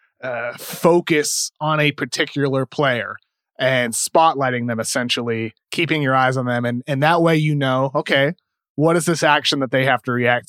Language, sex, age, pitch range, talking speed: English, male, 30-49, 125-155 Hz, 175 wpm